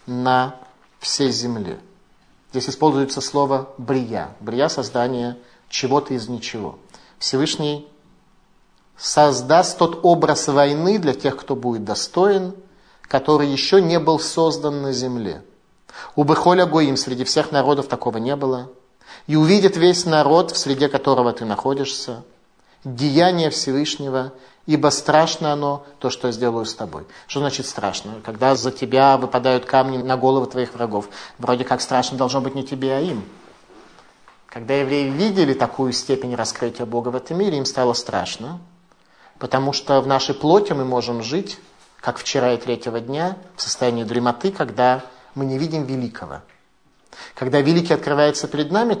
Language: Russian